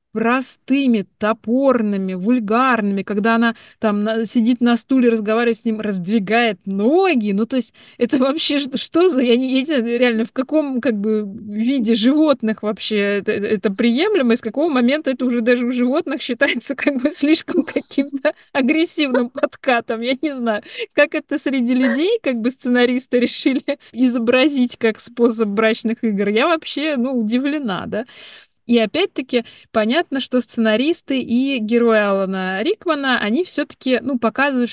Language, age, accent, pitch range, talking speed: Russian, 20-39, native, 215-270 Hz, 145 wpm